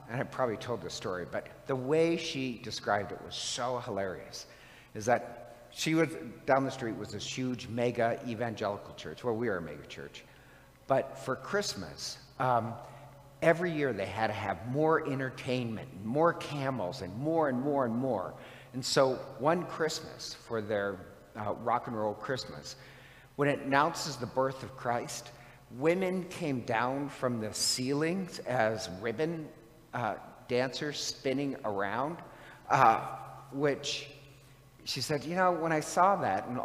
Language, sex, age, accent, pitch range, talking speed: English, male, 50-69, American, 120-155 Hz, 155 wpm